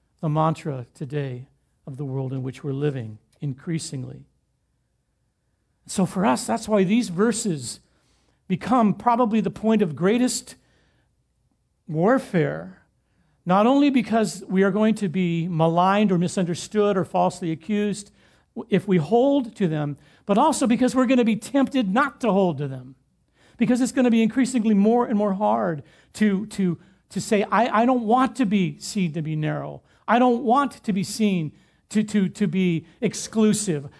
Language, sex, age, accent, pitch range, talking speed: English, male, 50-69, American, 165-215 Hz, 160 wpm